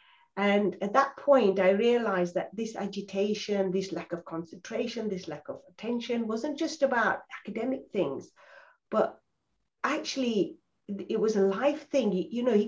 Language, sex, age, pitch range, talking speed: English, female, 50-69, 190-255 Hz, 150 wpm